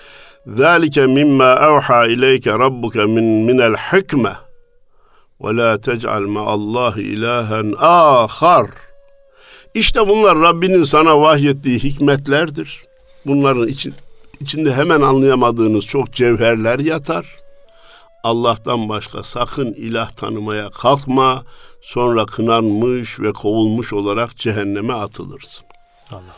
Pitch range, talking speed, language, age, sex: 110-150 Hz, 90 wpm, Turkish, 50-69, male